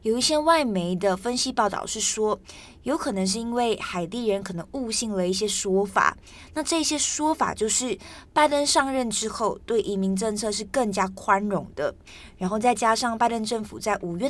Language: Chinese